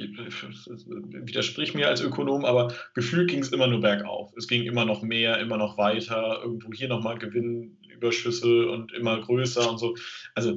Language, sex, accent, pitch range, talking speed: German, male, German, 110-125 Hz, 165 wpm